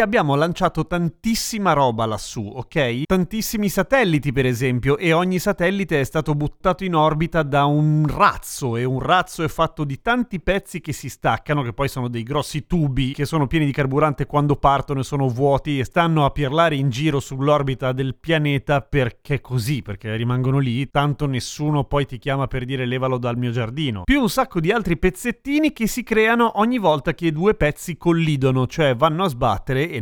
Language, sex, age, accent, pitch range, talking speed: Italian, male, 30-49, native, 130-175 Hz, 190 wpm